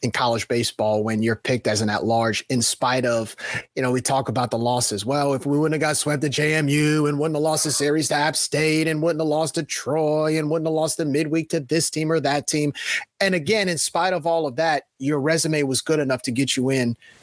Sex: male